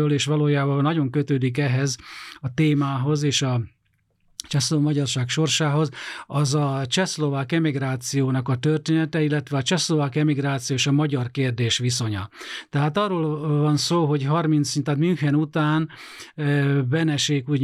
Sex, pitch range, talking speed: male, 130-150 Hz, 130 wpm